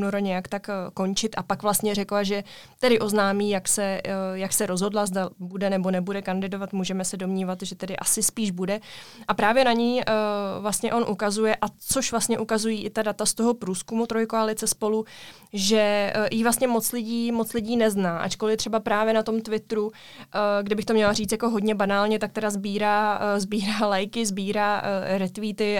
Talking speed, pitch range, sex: 170 wpm, 200-225 Hz, female